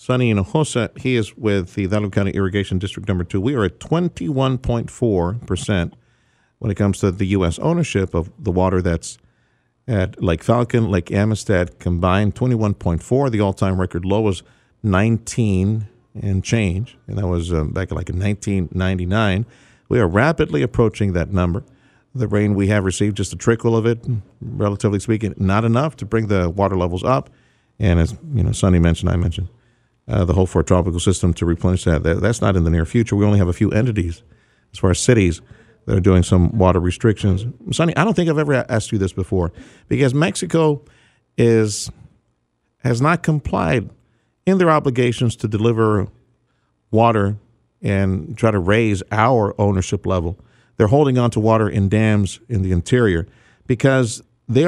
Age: 50-69